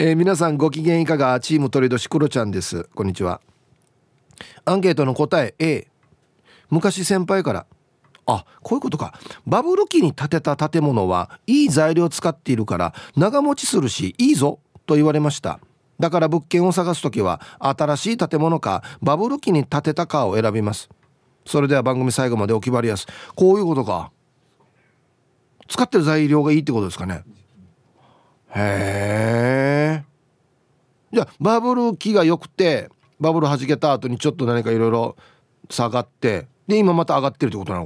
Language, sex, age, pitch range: Japanese, male, 40-59, 115-165 Hz